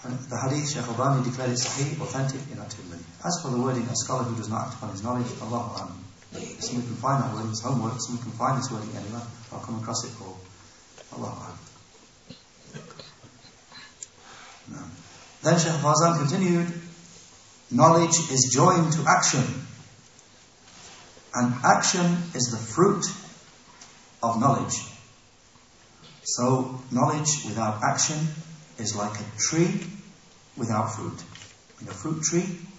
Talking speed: 140 wpm